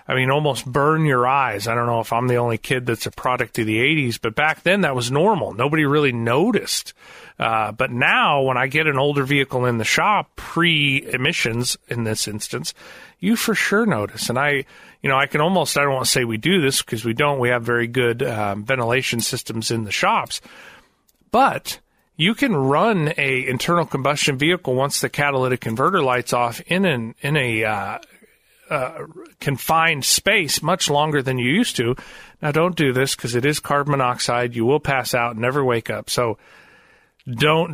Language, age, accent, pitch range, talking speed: English, 40-59, American, 120-150 Hz, 195 wpm